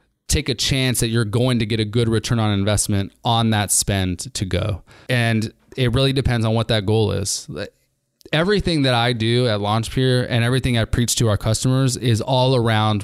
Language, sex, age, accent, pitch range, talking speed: English, male, 20-39, American, 105-125 Hz, 200 wpm